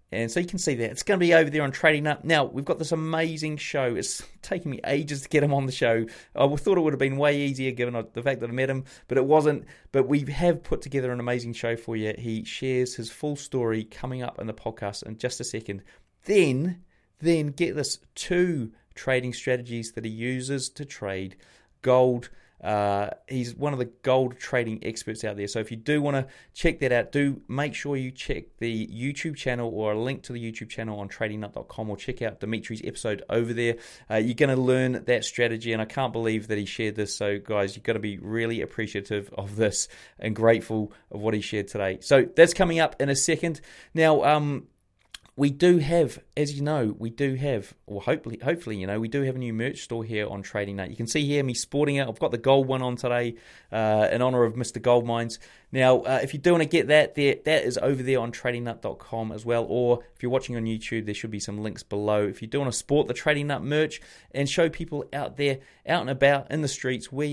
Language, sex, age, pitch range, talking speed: English, male, 30-49, 110-140 Hz, 240 wpm